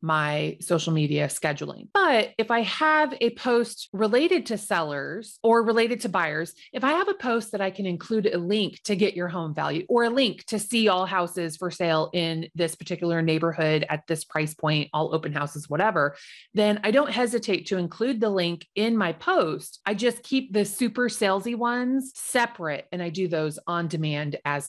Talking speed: 195 wpm